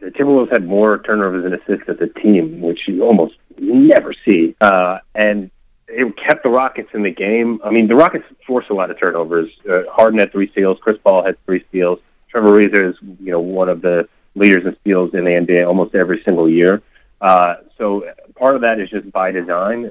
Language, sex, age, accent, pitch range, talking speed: English, male, 30-49, American, 90-105 Hz, 210 wpm